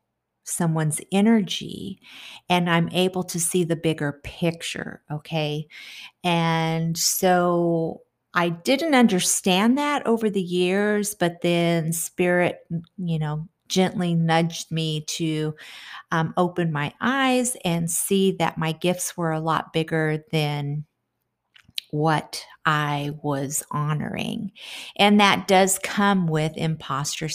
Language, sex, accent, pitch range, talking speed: English, female, American, 160-195 Hz, 115 wpm